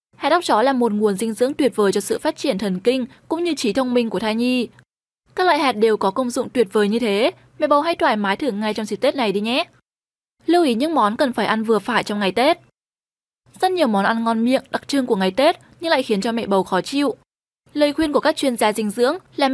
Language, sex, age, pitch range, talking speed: Vietnamese, female, 10-29, 210-280 Hz, 270 wpm